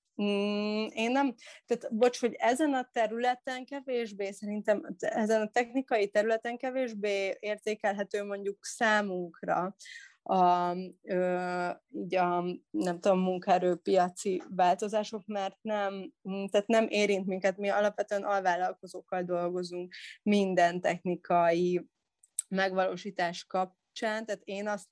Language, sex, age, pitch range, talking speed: Hungarian, female, 30-49, 180-215 Hz, 110 wpm